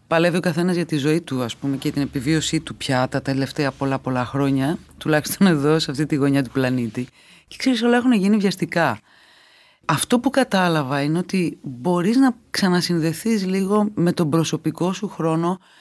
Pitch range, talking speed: 145-185 Hz, 180 wpm